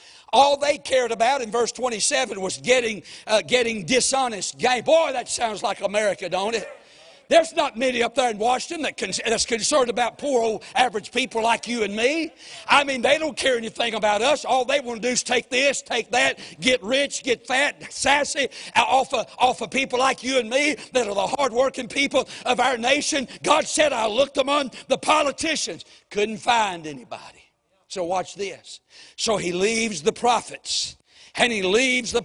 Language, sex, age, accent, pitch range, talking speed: English, male, 60-79, American, 205-260 Hz, 180 wpm